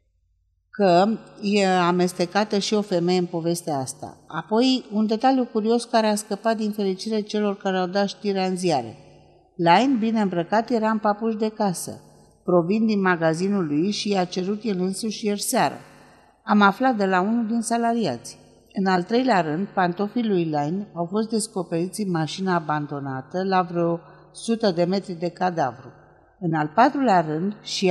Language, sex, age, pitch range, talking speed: Romanian, female, 50-69, 160-210 Hz, 165 wpm